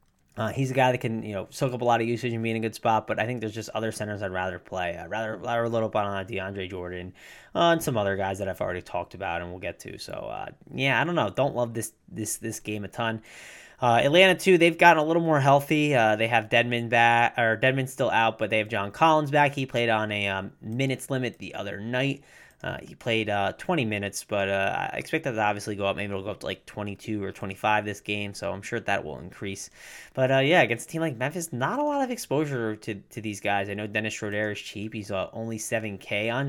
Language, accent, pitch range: English, American, 105-140 Hz